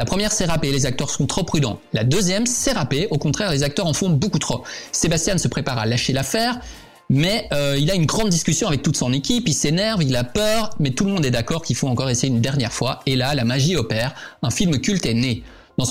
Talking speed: 255 wpm